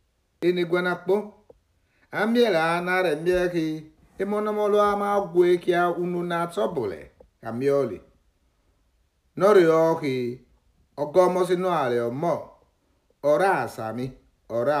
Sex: male